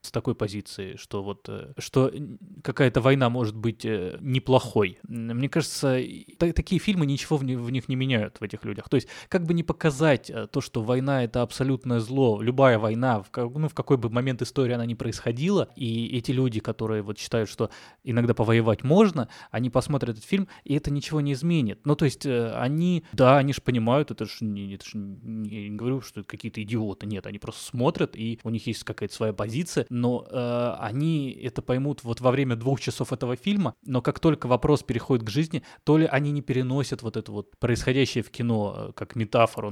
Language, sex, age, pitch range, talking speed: Russian, male, 20-39, 115-145 Hz, 190 wpm